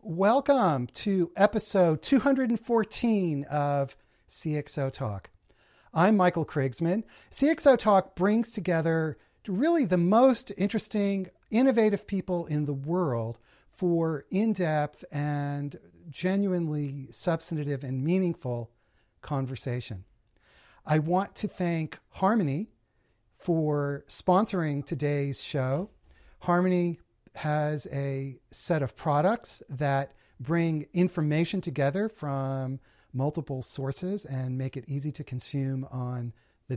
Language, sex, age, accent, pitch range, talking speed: English, male, 40-59, American, 135-185 Hz, 100 wpm